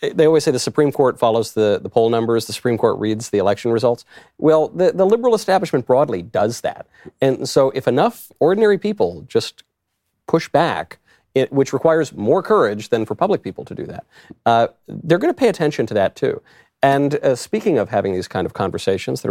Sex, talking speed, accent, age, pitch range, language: male, 205 wpm, American, 40-59, 110-155 Hz, English